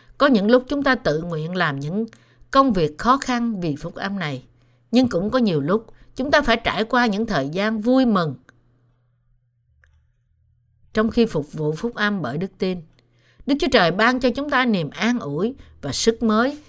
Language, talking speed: Vietnamese, 195 wpm